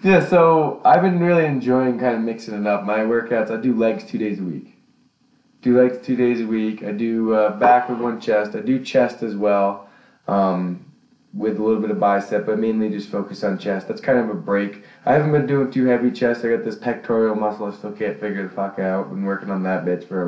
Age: 20-39